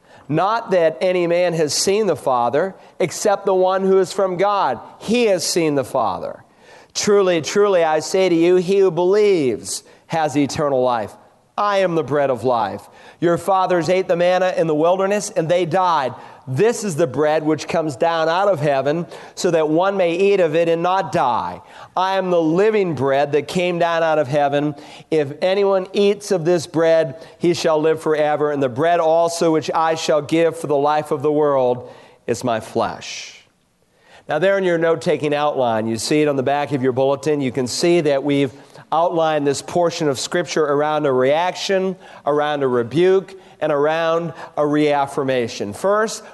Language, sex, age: English, male, 40-59